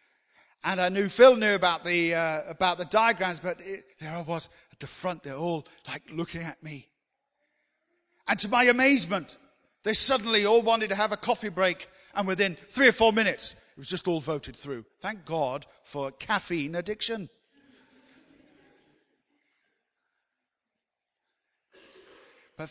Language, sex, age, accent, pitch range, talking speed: English, male, 50-69, British, 150-200 Hz, 150 wpm